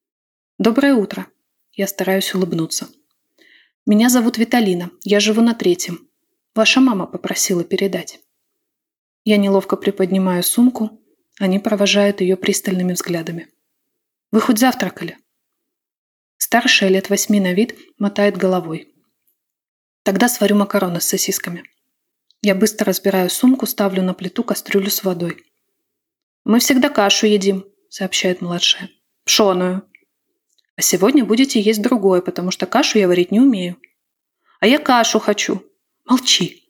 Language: Russian